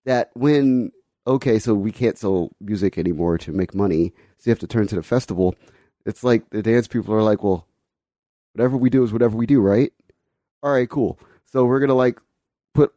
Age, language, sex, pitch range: 30-49, English, male, 105-130 Hz